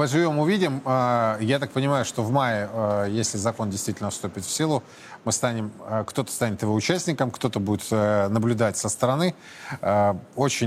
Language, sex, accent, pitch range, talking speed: Russian, male, native, 110-135 Hz, 145 wpm